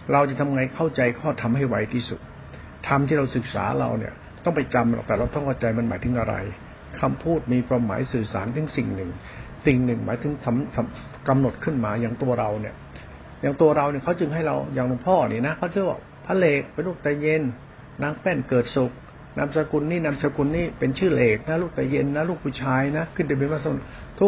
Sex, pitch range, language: male, 120-150 Hz, Thai